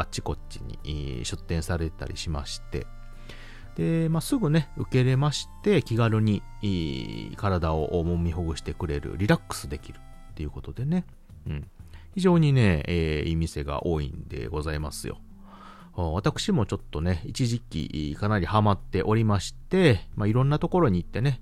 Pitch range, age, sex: 80-125 Hz, 30-49, male